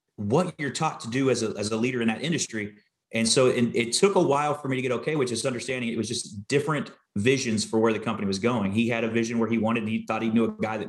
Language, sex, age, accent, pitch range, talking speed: English, male, 30-49, American, 115-135 Hz, 290 wpm